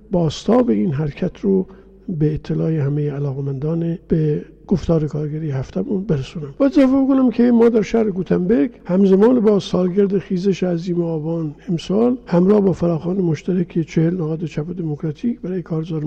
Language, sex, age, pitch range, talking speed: Persian, male, 50-69, 160-195 Hz, 140 wpm